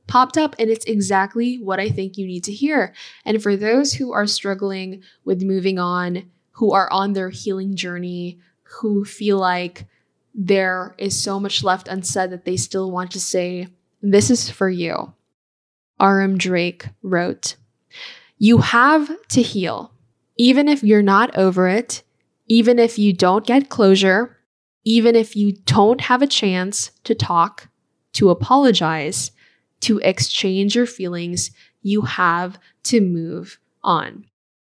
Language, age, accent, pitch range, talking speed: English, 10-29, American, 185-225 Hz, 145 wpm